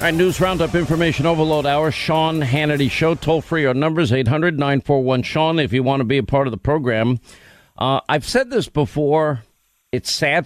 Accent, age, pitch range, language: American, 50-69, 115-140 Hz, English